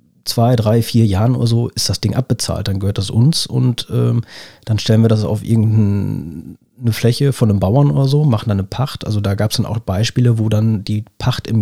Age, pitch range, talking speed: 40-59, 105-120 Hz, 225 wpm